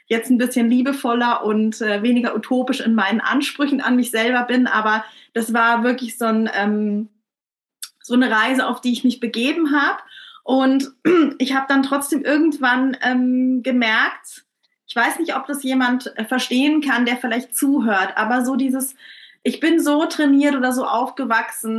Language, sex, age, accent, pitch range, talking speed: German, female, 20-39, German, 225-270 Hz, 160 wpm